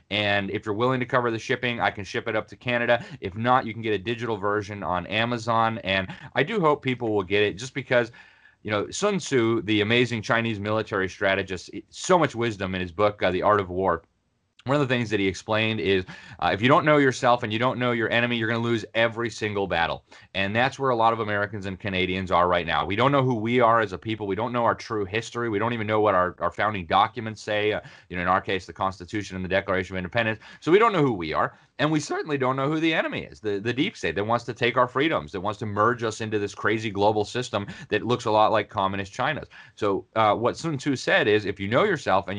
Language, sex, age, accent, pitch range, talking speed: English, male, 30-49, American, 100-120 Hz, 265 wpm